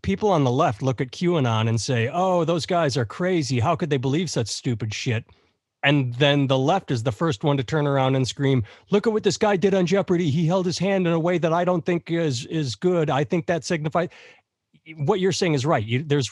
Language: English